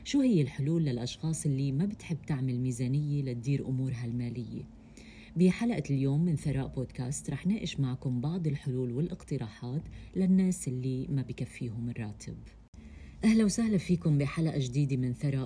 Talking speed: 135 wpm